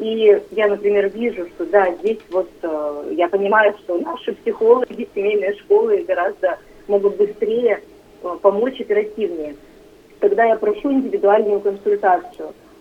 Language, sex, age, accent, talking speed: Russian, female, 30-49, native, 125 wpm